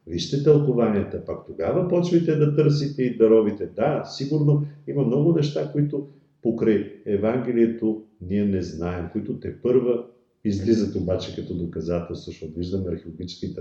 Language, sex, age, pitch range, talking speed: Bulgarian, male, 50-69, 85-110 Hz, 135 wpm